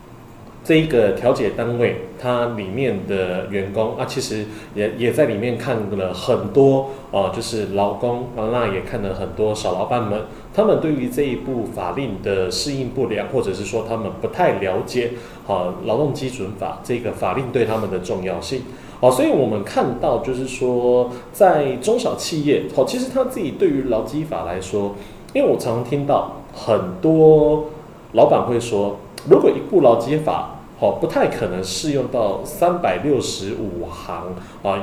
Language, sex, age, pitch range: Chinese, male, 30-49, 100-145 Hz